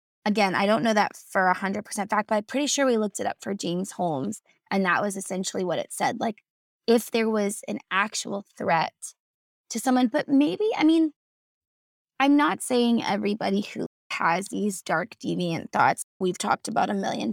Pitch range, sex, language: 190-230 Hz, female, English